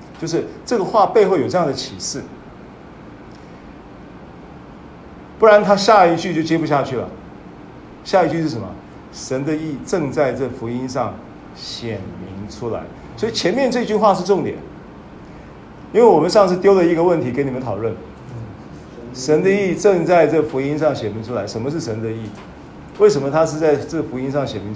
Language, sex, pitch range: Chinese, male, 115-175 Hz